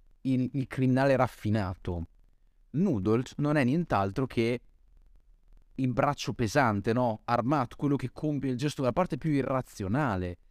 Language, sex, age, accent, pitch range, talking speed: Italian, male, 30-49, native, 110-150 Hz, 130 wpm